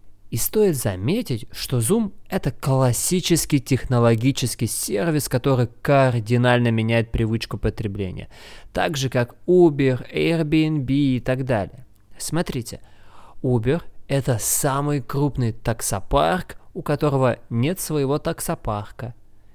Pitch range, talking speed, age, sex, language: 115-145 Hz, 105 wpm, 20-39, male, Russian